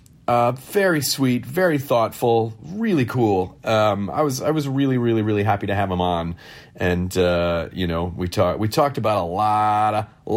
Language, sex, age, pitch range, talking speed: English, male, 40-59, 105-150 Hz, 190 wpm